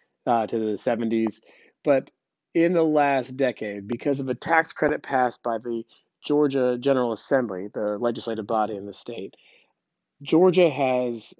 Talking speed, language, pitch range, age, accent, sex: 145 wpm, English, 120-150 Hz, 30-49, American, male